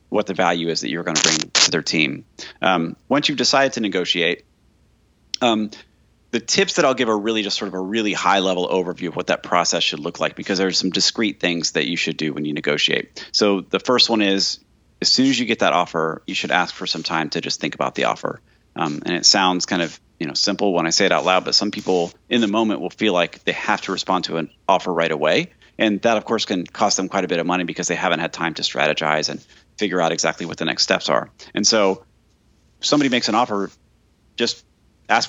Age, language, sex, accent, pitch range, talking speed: 30-49, English, male, American, 85-110 Hz, 250 wpm